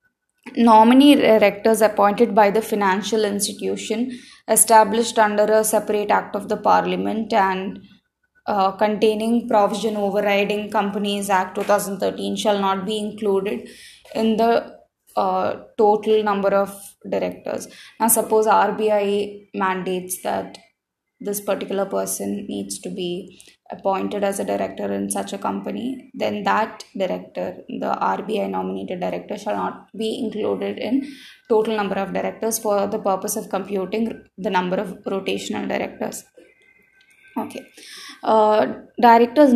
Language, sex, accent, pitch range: English, female, Indian, 200-230 Hz